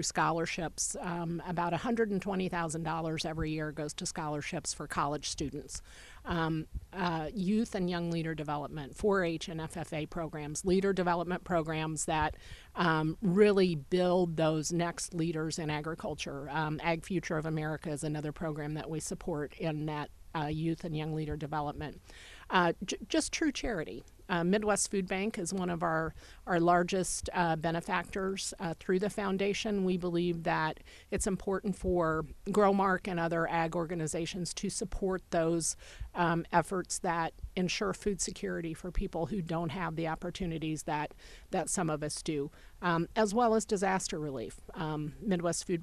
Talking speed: 155 wpm